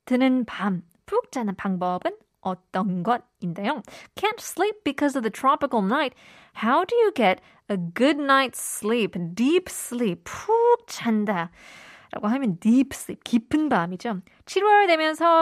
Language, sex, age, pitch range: Korean, female, 20-39, 200-270 Hz